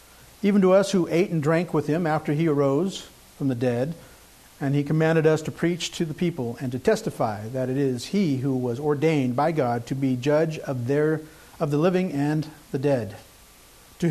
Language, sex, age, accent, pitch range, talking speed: English, male, 50-69, American, 130-170 Hz, 205 wpm